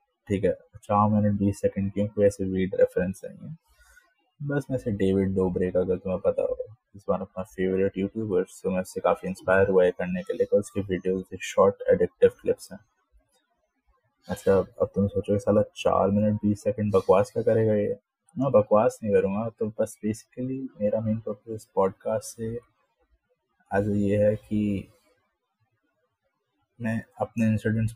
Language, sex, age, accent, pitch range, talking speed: English, male, 20-39, Indian, 100-140 Hz, 105 wpm